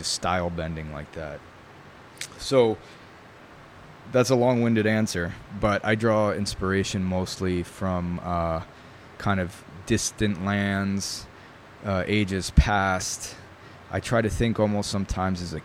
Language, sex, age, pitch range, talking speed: English, male, 20-39, 85-100 Hz, 120 wpm